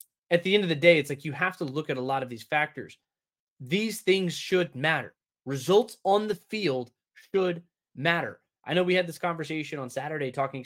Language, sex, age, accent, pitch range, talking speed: English, male, 20-39, American, 135-175 Hz, 210 wpm